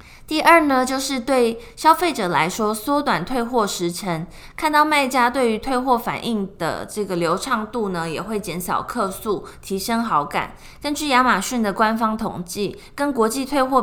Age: 20-39